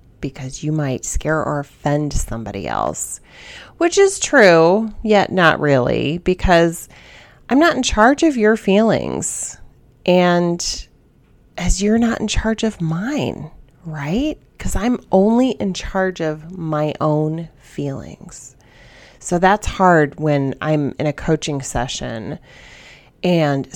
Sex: female